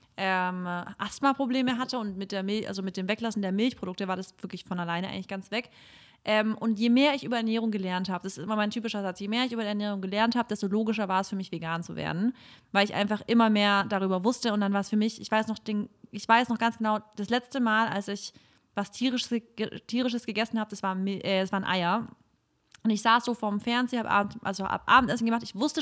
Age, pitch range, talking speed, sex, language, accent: 30-49, 195-235 Hz, 235 wpm, female, German, German